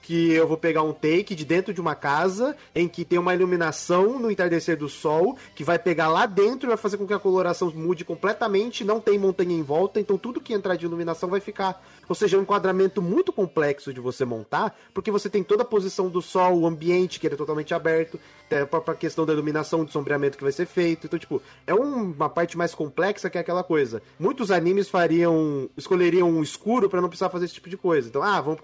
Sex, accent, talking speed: male, Brazilian, 235 wpm